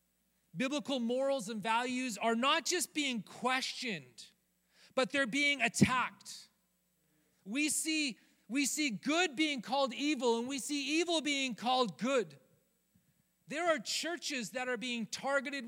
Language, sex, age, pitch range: English, male, 40-59, 190-275 Hz